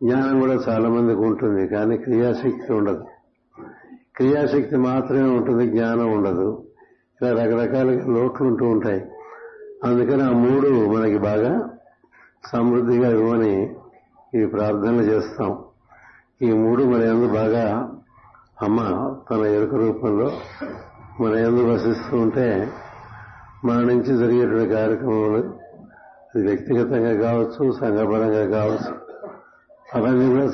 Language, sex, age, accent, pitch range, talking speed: Telugu, male, 60-79, native, 110-125 Hz, 95 wpm